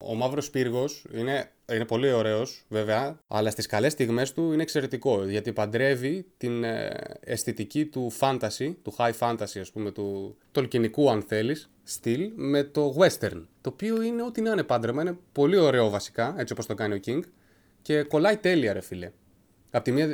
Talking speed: 175 wpm